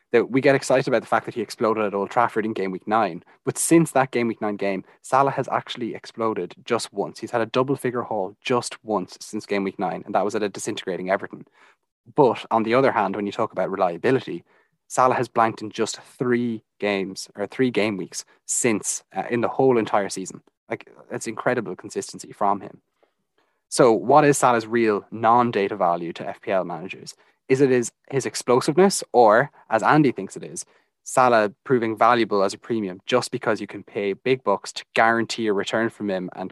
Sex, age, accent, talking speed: male, 20-39, Irish, 200 wpm